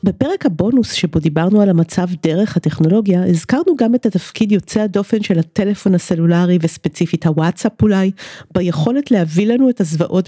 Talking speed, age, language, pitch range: 145 wpm, 40-59, Hebrew, 170-230 Hz